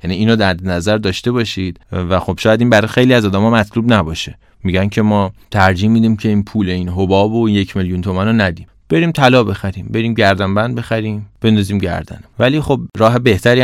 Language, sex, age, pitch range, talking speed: Persian, male, 30-49, 95-115 Hz, 190 wpm